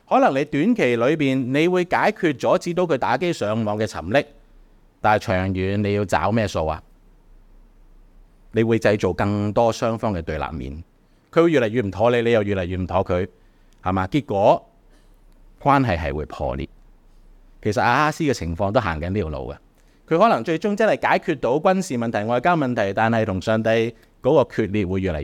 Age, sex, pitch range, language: 30-49, male, 95-140 Hz, Chinese